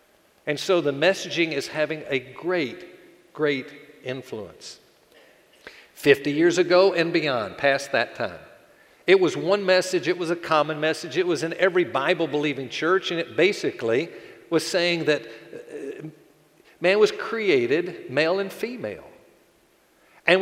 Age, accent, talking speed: 50-69, American, 135 wpm